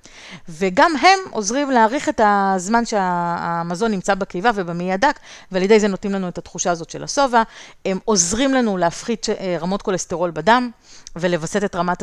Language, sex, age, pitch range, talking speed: Hebrew, female, 30-49, 180-225 Hz, 155 wpm